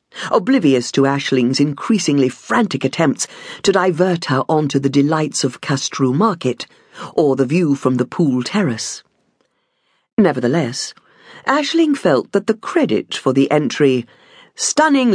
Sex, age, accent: female, 50-69, British